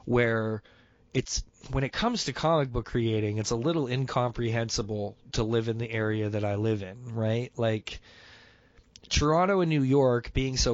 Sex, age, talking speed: male, 20-39, 170 wpm